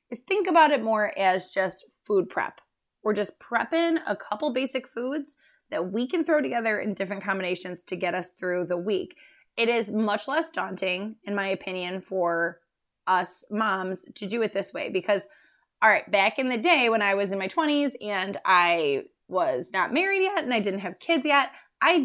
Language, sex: English, female